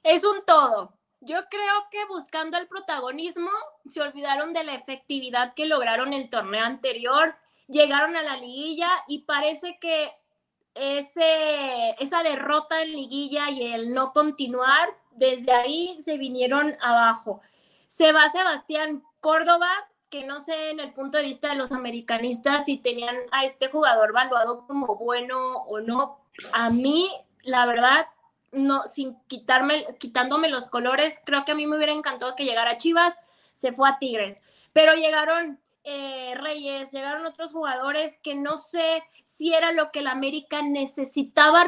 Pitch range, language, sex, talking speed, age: 260-315 Hz, Spanish, female, 155 wpm, 20-39